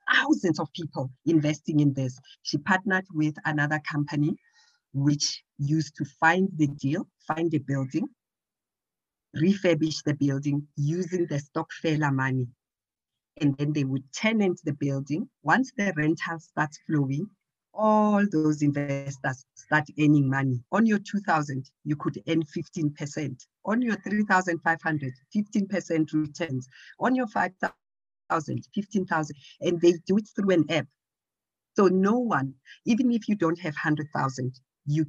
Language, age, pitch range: English, 50-69, 145-175 Hz